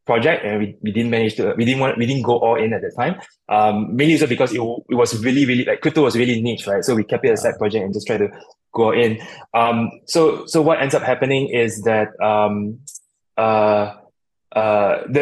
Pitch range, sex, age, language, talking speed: 115-140 Hz, male, 20-39, English, 220 wpm